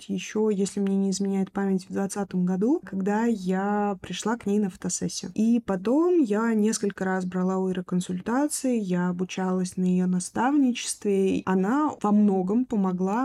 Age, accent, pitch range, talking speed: 20-39, native, 190-240 Hz, 150 wpm